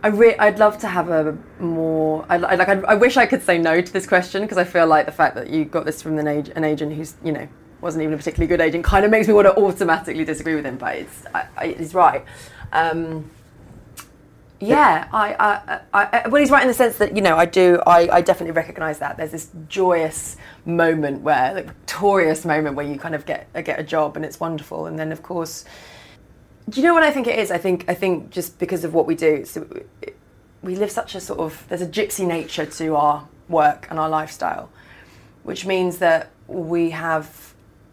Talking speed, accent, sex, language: 235 wpm, British, female, English